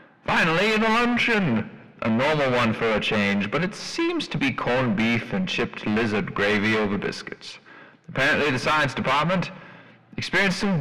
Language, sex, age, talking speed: English, male, 30-49, 155 wpm